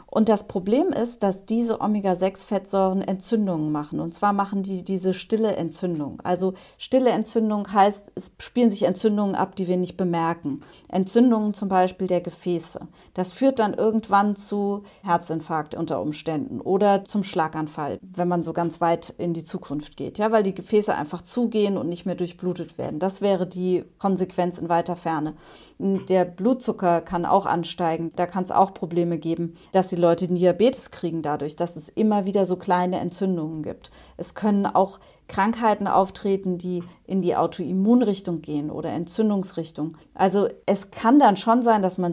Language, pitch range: German, 175-210 Hz